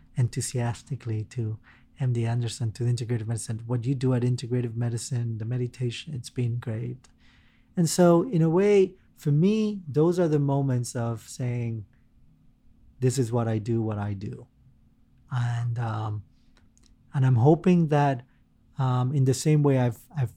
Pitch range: 115-130 Hz